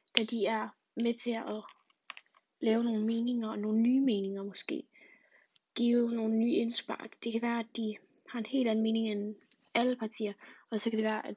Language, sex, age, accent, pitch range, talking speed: Danish, female, 20-39, native, 215-235 Hz, 190 wpm